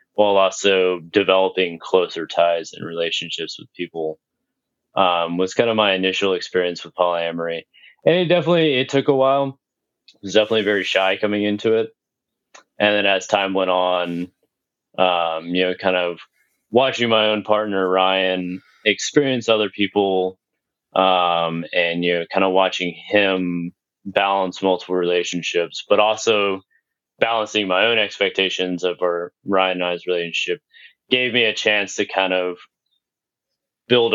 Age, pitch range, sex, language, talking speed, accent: 20-39, 90-105 Hz, male, English, 145 wpm, American